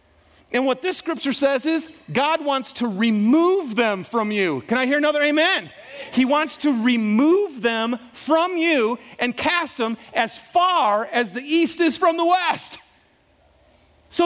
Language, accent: English, American